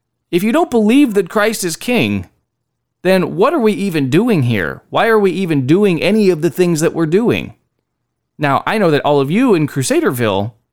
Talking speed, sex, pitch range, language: 200 wpm, male, 140-215 Hz, English